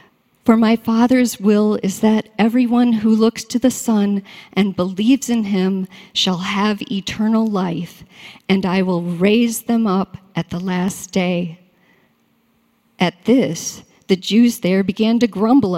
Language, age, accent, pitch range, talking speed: English, 50-69, American, 180-230 Hz, 145 wpm